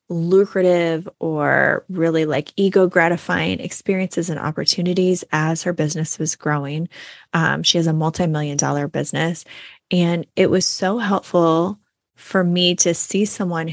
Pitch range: 165-190 Hz